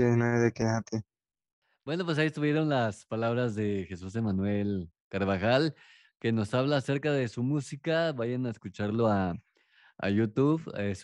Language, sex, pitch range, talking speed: Spanish, male, 105-130 Hz, 130 wpm